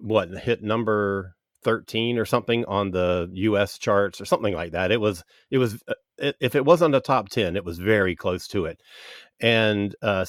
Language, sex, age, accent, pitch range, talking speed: English, male, 40-59, American, 95-120 Hz, 185 wpm